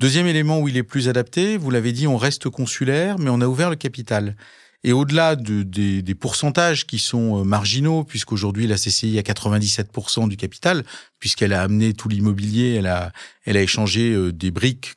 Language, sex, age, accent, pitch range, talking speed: French, male, 40-59, French, 110-145 Hz, 190 wpm